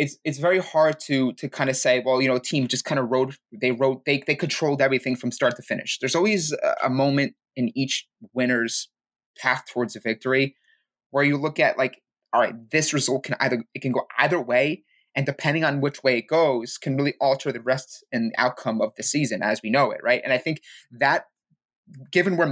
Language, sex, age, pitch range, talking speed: English, male, 20-39, 125-145 Hz, 220 wpm